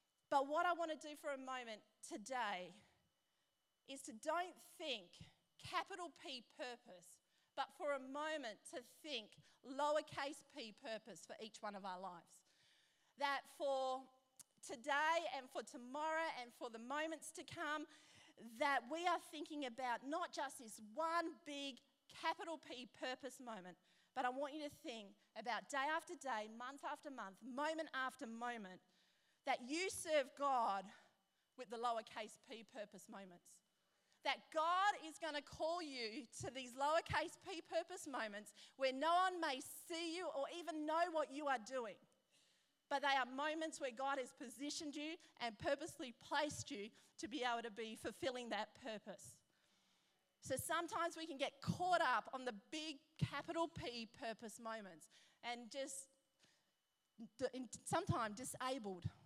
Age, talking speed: 40-59, 150 wpm